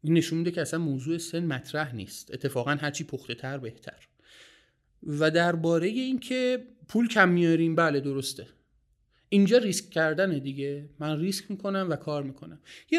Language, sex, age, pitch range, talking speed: Persian, male, 30-49, 145-220 Hz, 155 wpm